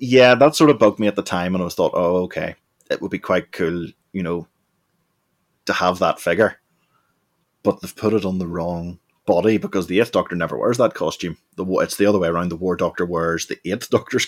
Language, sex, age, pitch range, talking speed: English, male, 20-39, 85-100 Hz, 225 wpm